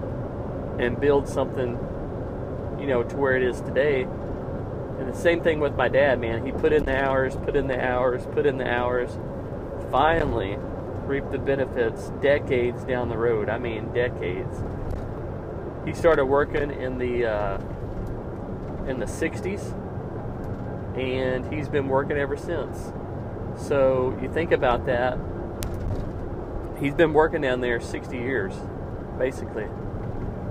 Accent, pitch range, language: American, 100-135 Hz, English